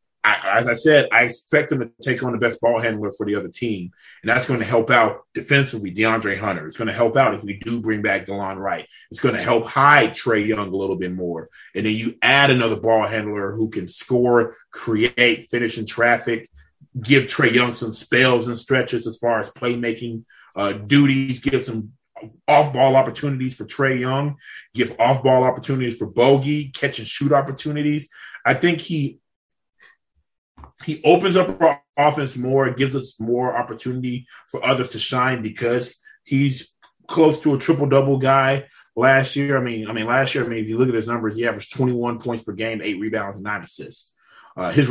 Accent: American